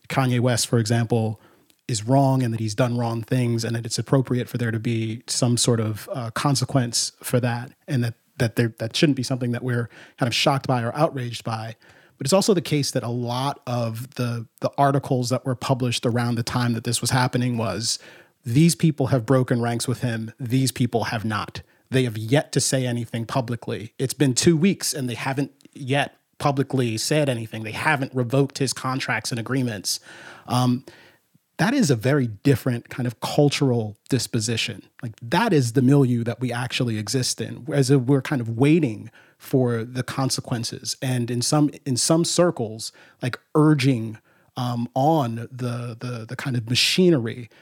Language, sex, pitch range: English, male, 120-140 Hz